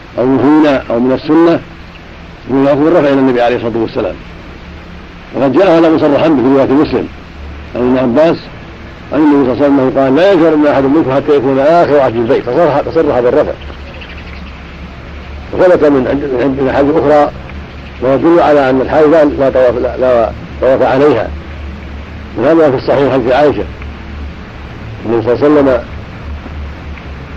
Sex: male